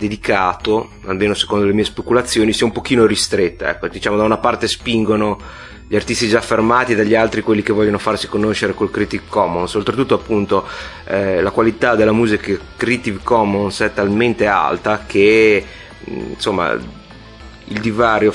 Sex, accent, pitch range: male, native, 95-110 Hz